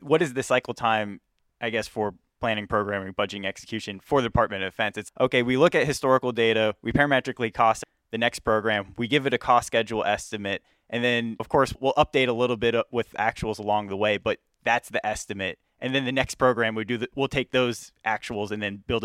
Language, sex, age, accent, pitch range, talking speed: English, male, 20-39, American, 105-130 Hz, 210 wpm